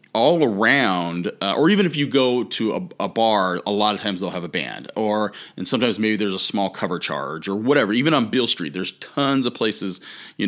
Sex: male